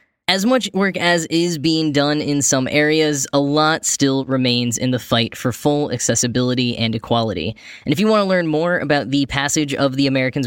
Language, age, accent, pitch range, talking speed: English, 10-29, American, 125-155 Hz, 200 wpm